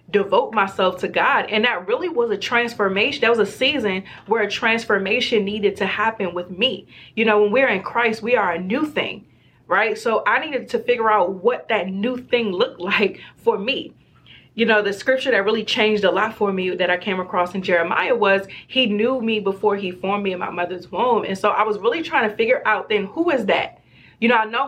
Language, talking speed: English, 230 wpm